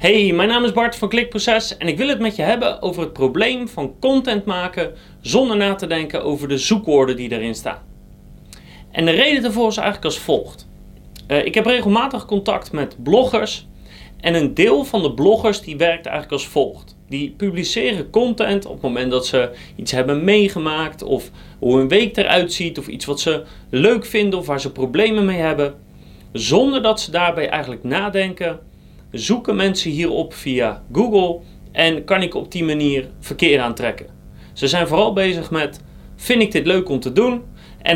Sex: male